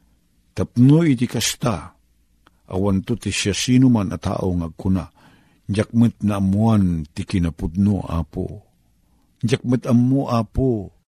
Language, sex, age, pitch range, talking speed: Filipino, male, 50-69, 95-125 Hz, 100 wpm